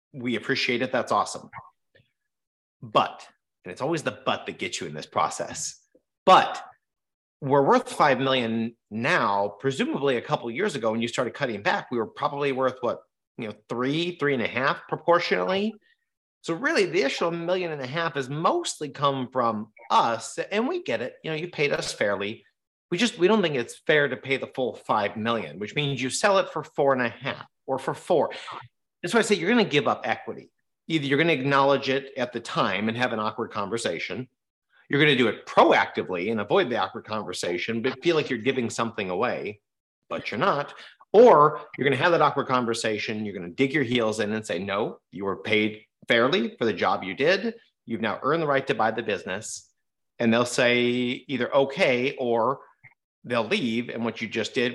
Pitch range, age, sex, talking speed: 115-150 Hz, 30-49, male, 210 wpm